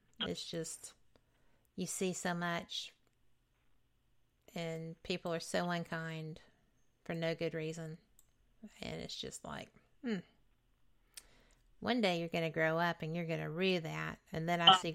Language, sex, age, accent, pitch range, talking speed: English, female, 50-69, American, 165-195 Hz, 150 wpm